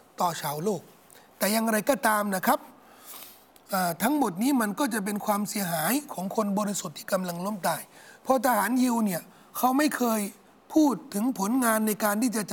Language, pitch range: Thai, 205-265 Hz